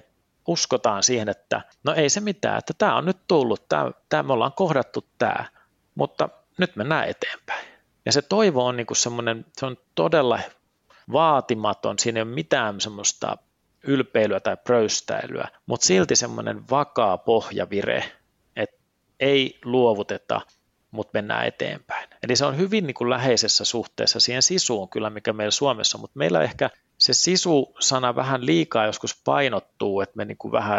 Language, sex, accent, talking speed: Finnish, male, native, 155 wpm